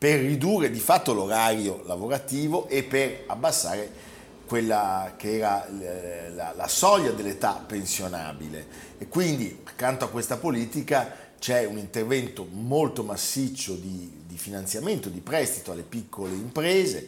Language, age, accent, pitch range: Italian, 50-69, native, 105-140 Hz